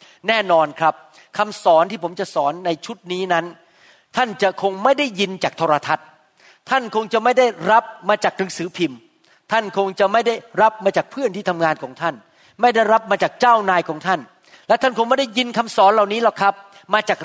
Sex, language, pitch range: male, Thai, 165-230 Hz